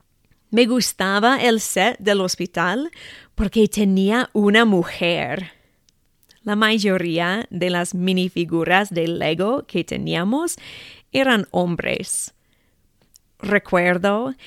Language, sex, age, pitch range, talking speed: English, female, 30-49, 180-230 Hz, 90 wpm